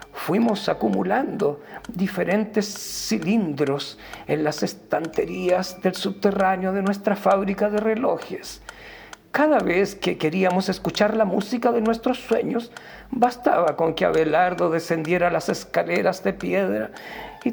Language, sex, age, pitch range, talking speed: Spanish, male, 50-69, 175-235 Hz, 115 wpm